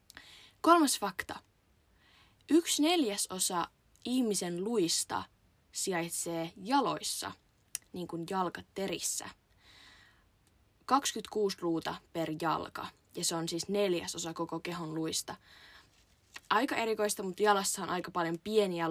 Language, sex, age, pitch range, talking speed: Finnish, female, 20-39, 165-205 Hz, 100 wpm